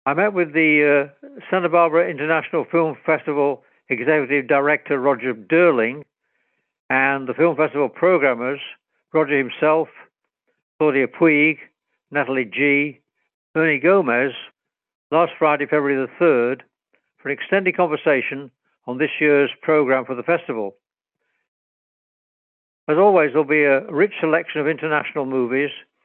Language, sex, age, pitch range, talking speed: English, male, 60-79, 135-160 Hz, 125 wpm